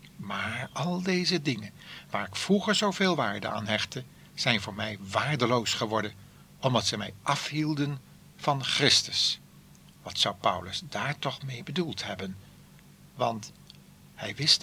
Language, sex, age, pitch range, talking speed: Dutch, male, 60-79, 110-160 Hz, 135 wpm